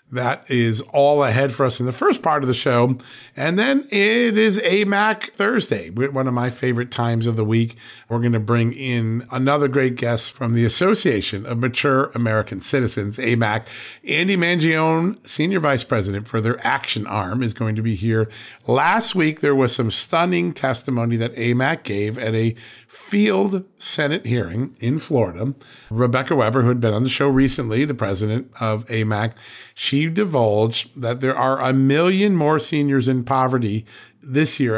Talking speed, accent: 175 wpm, American